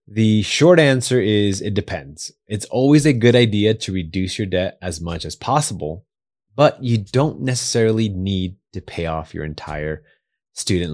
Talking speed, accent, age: 165 wpm, American, 30-49